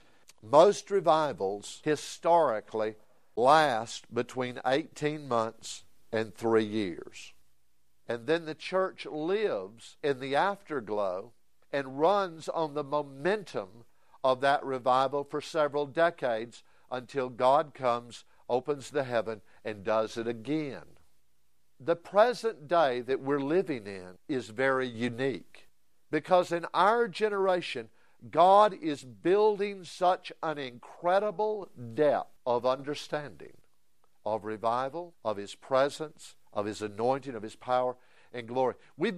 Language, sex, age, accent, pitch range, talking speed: English, male, 60-79, American, 120-170 Hz, 115 wpm